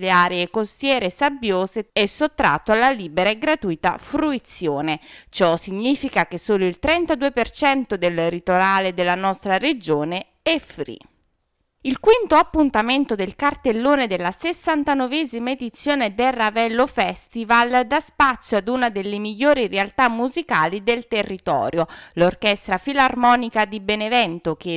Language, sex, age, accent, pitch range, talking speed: Italian, female, 30-49, native, 185-265 Hz, 120 wpm